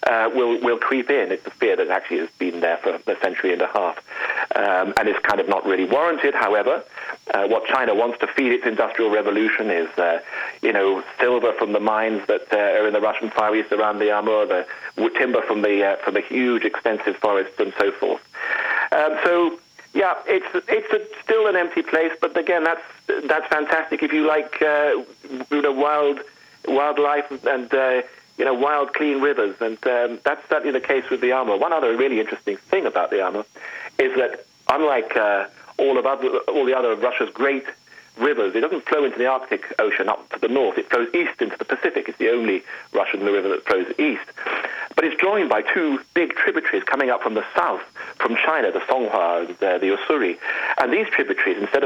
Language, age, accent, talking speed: English, 40-59, British, 205 wpm